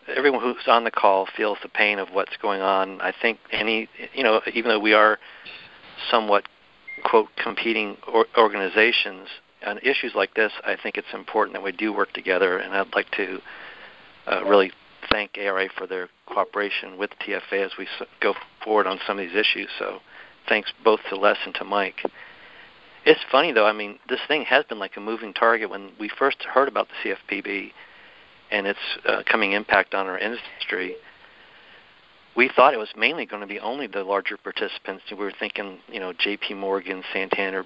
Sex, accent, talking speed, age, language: male, American, 185 wpm, 50-69, English